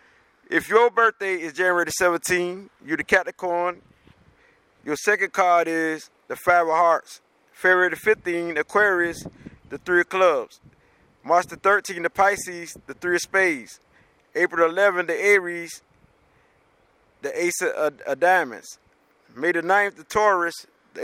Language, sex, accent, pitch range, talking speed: English, male, American, 170-200 Hz, 150 wpm